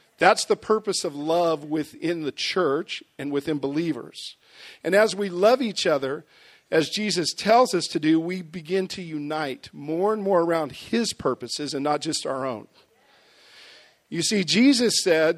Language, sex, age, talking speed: English, male, 50-69, 165 wpm